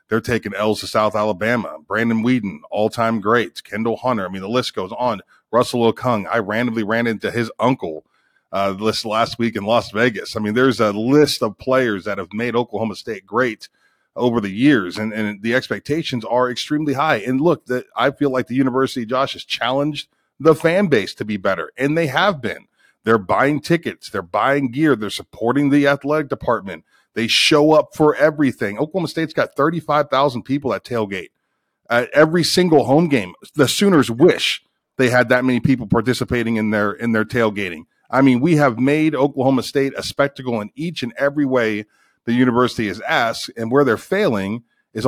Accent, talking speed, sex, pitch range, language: American, 190 wpm, male, 110-140 Hz, English